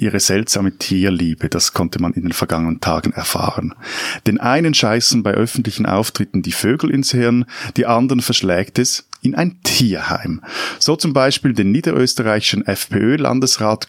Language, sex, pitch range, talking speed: German, male, 100-135 Hz, 145 wpm